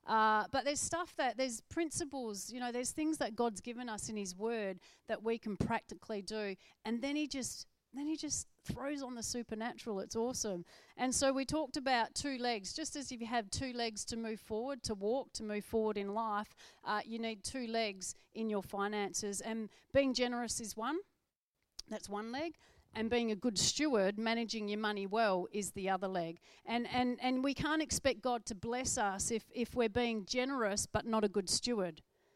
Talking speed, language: 200 wpm, English